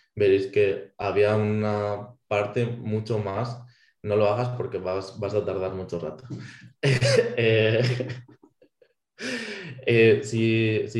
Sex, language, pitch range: male, Spanish, 100-125 Hz